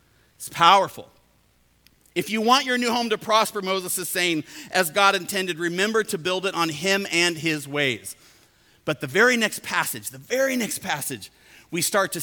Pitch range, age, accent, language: 170-225 Hz, 40-59, American, English